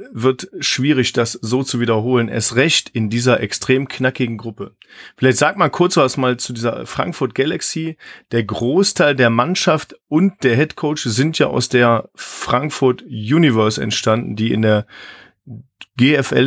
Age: 40-59